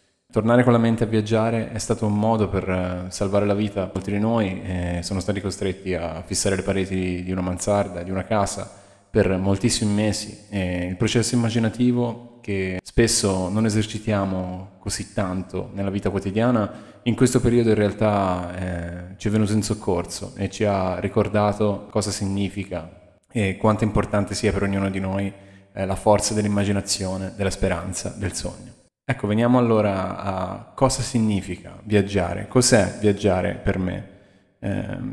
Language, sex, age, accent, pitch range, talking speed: Italian, male, 20-39, native, 95-110 Hz, 150 wpm